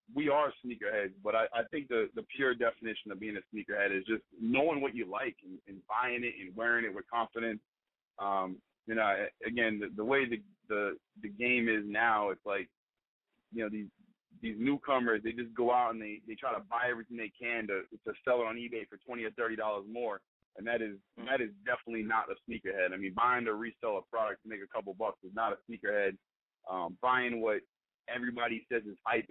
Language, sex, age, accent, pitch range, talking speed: English, male, 30-49, American, 110-140 Hz, 220 wpm